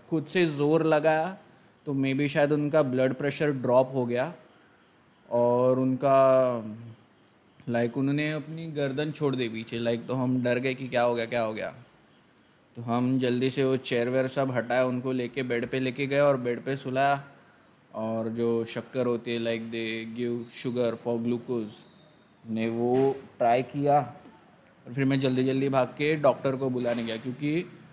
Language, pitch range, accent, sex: Hindi, 120-140 Hz, native, male